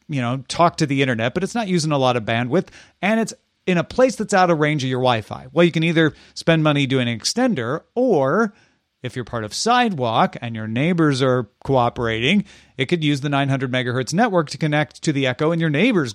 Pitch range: 125-170 Hz